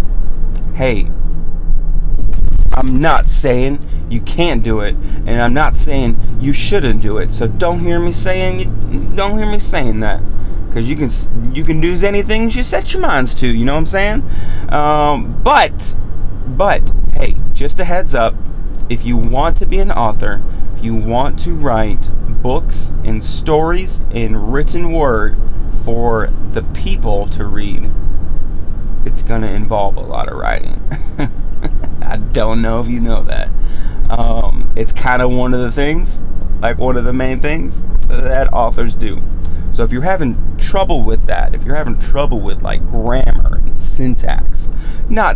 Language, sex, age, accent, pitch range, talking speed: English, male, 30-49, American, 95-130 Hz, 165 wpm